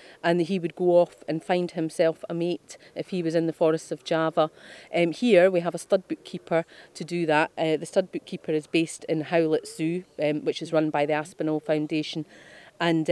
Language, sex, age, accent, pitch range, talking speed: English, female, 40-59, British, 155-200 Hz, 210 wpm